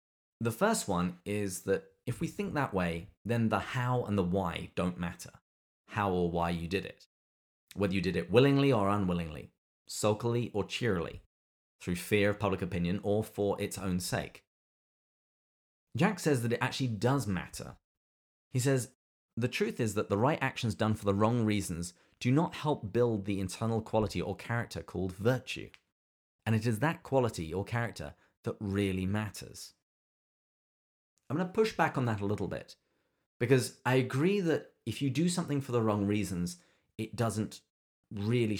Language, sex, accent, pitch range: English, male, British, 90-120 Hz